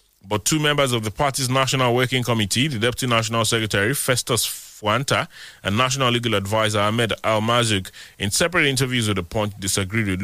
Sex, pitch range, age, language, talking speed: male, 100-130 Hz, 30-49, English, 170 wpm